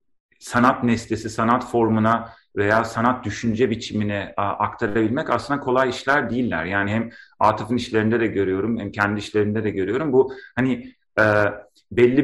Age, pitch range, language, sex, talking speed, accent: 40-59, 105-120 Hz, Turkish, male, 140 wpm, native